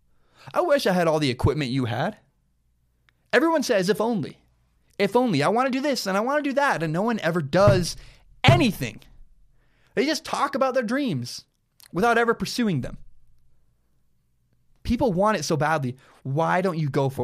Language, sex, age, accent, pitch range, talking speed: English, male, 20-39, American, 130-200 Hz, 180 wpm